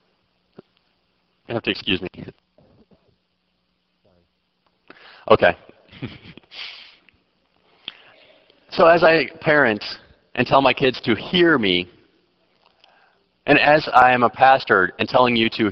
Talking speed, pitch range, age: 105 wpm, 100-130 Hz, 40-59